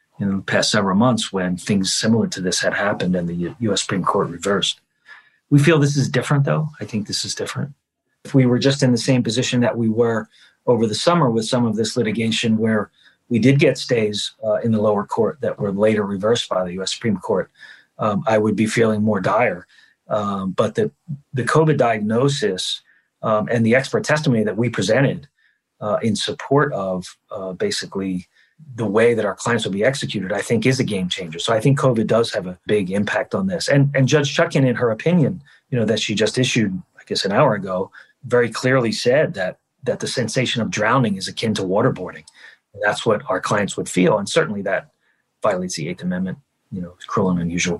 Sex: male